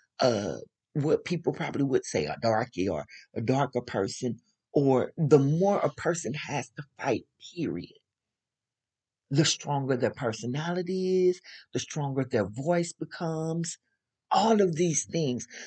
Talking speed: 135 wpm